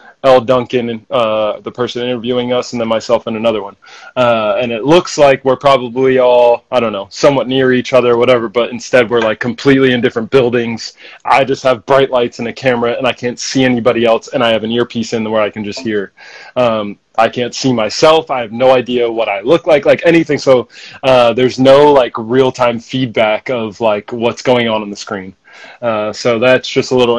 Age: 20-39